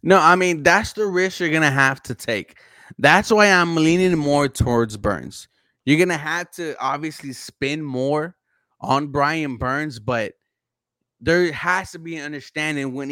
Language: English